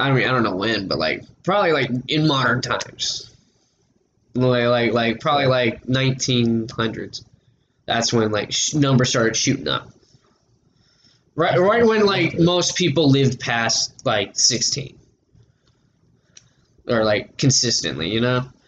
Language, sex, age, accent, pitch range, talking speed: English, male, 10-29, American, 125-165 Hz, 135 wpm